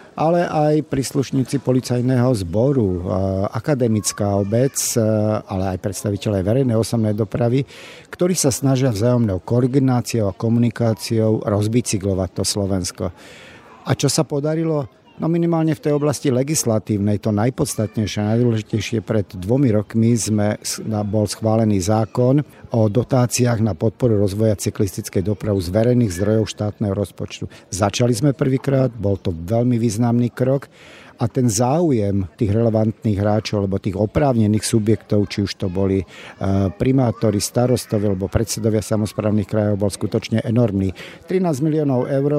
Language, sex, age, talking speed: Slovak, male, 50-69, 130 wpm